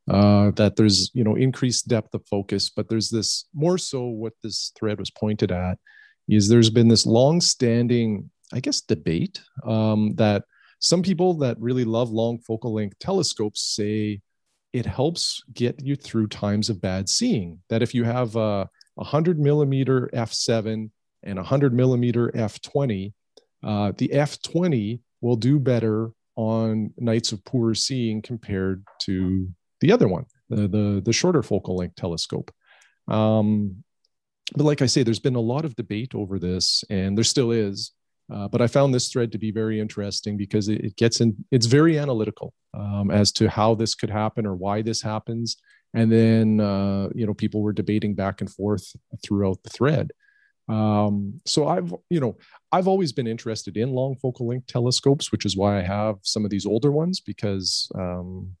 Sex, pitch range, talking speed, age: male, 105-125 Hz, 175 wpm, 40-59